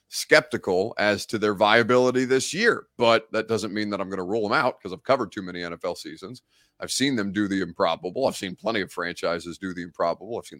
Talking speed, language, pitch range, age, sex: 230 wpm, English, 95-125 Hz, 30-49, male